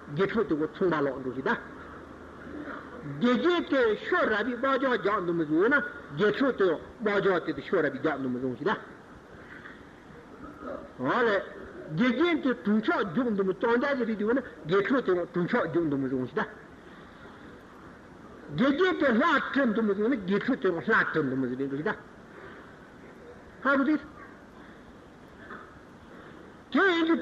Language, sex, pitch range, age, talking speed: Italian, male, 190-285 Hz, 60-79, 45 wpm